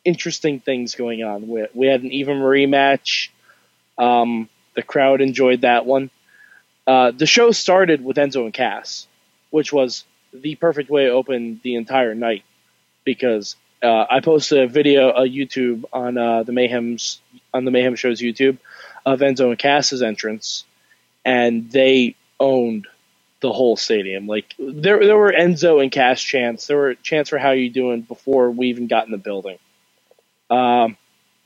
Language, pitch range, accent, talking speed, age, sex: English, 120-150 Hz, American, 160 wpm, 20-39, male